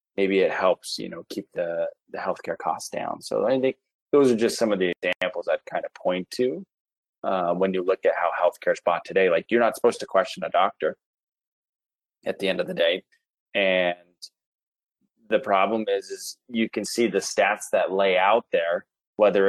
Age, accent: 30-49, American